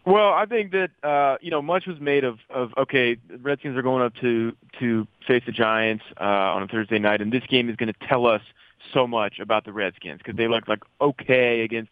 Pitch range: 110-130 Hz